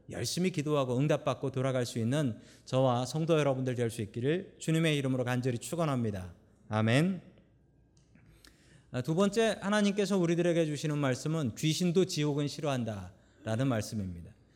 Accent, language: native, Korean